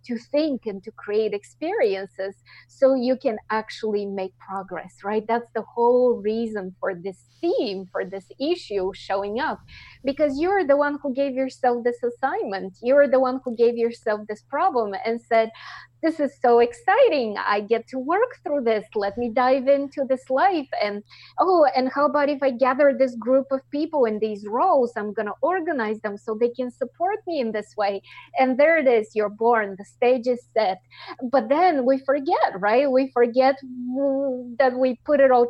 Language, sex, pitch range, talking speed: English, female, 215-270 Hz, 185 wpm